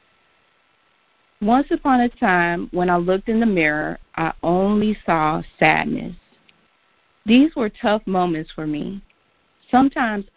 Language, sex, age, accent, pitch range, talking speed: English, female, 40-59, American, 170-215 Hz, 120 wpm